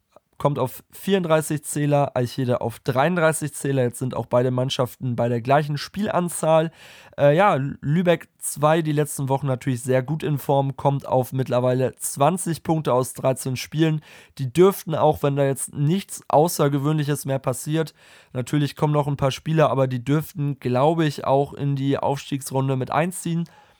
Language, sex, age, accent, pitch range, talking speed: German, male, 20-39, German, 130-155 Hz, 165 wpm